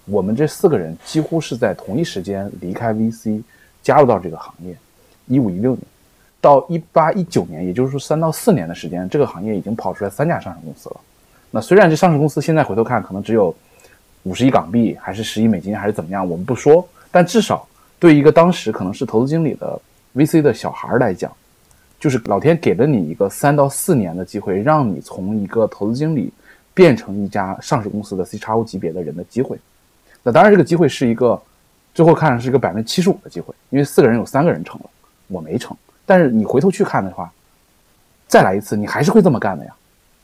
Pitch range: 105-160 Hz